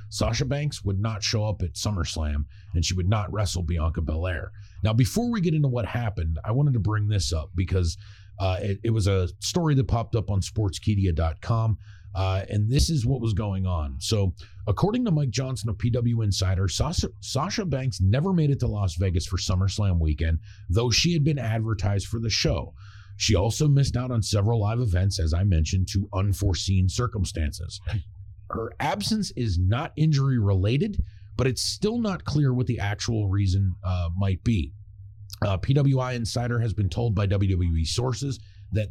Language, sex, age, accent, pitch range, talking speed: English, male, 40-59, American, 95-120 Hz, 180 wpm